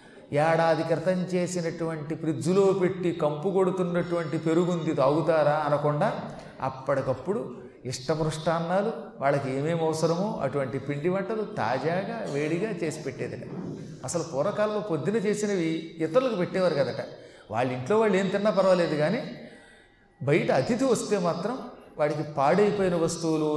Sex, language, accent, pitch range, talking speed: male, Telugu, native, 150-200 Hz, 105 wpm